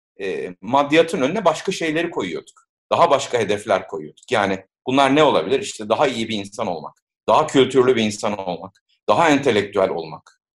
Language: Turkish